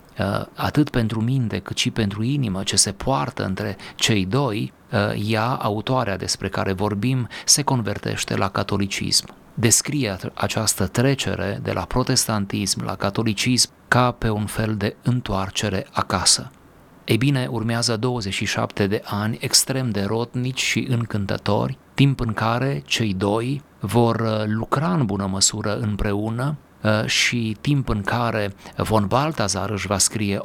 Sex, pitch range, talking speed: male, 100-125 Hz, 135 wpm